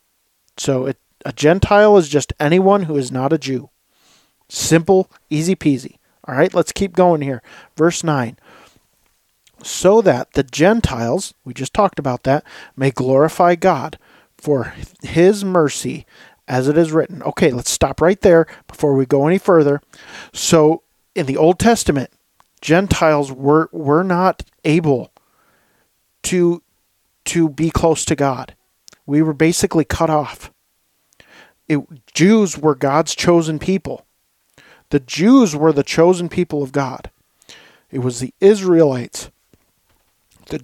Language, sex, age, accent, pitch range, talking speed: English, male, 40-59, American, 140-180 Hz, 135 wpm